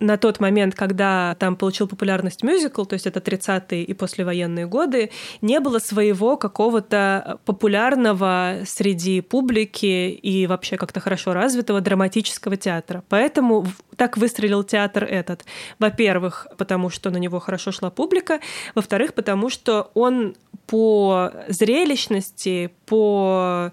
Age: 20-39